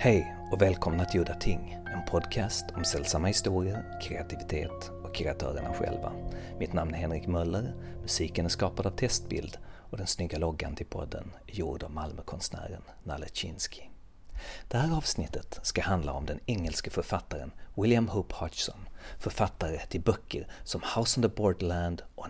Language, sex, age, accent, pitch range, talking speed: Swedish, male, 40-59, native, 85-105 Hz, 155 wpm